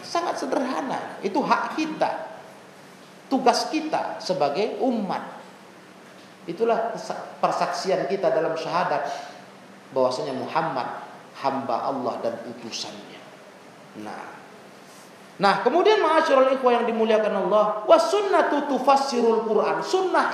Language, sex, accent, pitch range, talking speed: Indonesian, male, native, 170-260 Hz, 95 wpm